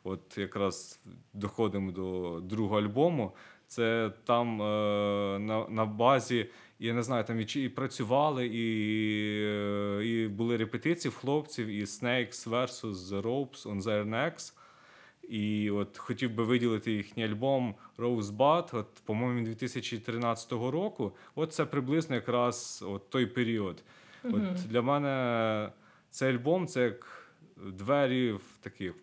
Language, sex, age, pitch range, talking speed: Ukrainian, male, 20-39, 105-125 Hz, 130 wpm